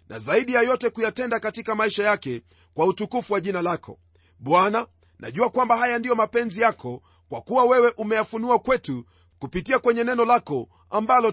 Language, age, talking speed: Swahili, 40-59, 160 wpm